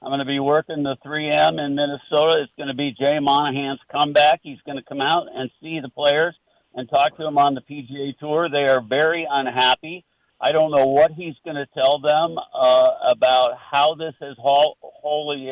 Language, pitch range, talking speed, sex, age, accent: English, 145-180 Hz, 200 wpm, male, 60-79, American